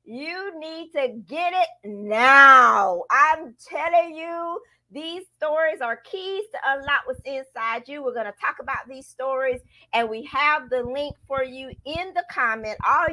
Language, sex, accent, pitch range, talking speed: English, female, American, 235-325 Hz, 165 wpm